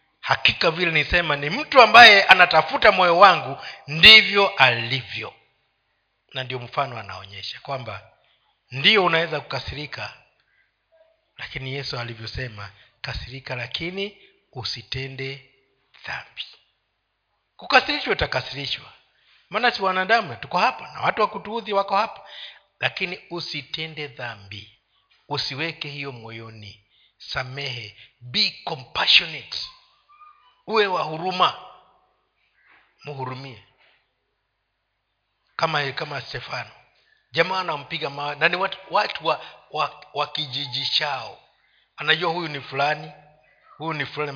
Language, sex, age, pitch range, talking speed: Swahili, male, 50-69, 125-160 Hz, 95 wpm